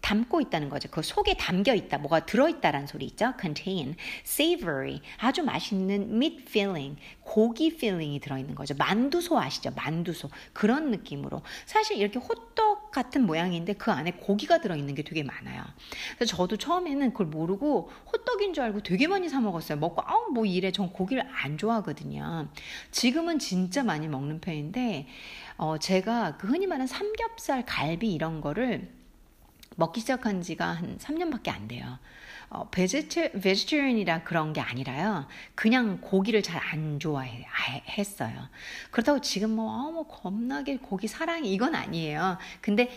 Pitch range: 160-265 Hz